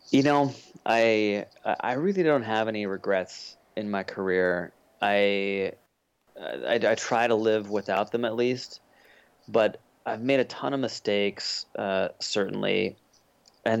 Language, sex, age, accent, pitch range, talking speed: English, male, 30-49, American, 95-115 Hz, 140 wpm